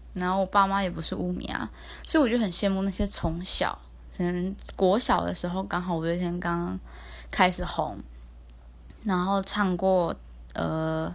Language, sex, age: Chinese, female, 20-39